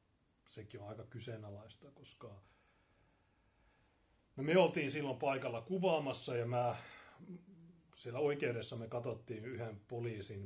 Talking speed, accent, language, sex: 110 wpm, native, Finnish, male